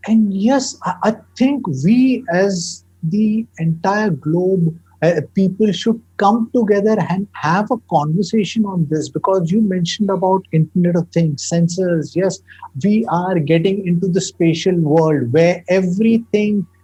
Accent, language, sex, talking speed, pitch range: Indian, English, male, 135 wpm, 165-220 Hz